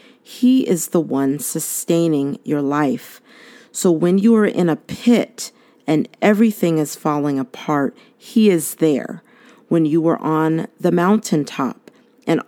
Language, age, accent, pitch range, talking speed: English, 40-59, American, 155-205 Hz, 140 wpm